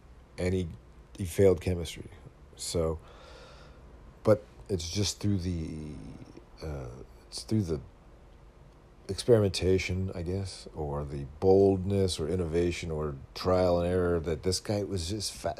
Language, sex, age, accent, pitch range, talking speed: English, male, 50-69, American, 80-95 Hz, 125 wpm